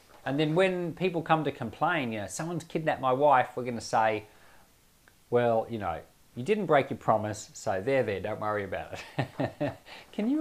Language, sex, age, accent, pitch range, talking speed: English, male, 30-49, Australian, 110-150 Hz, 190 wpm